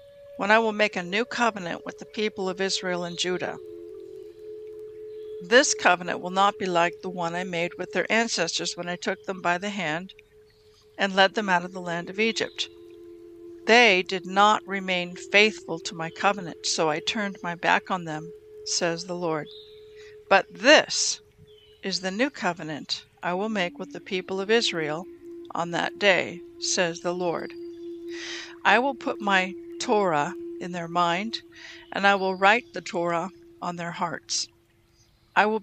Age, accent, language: 60-79, American, English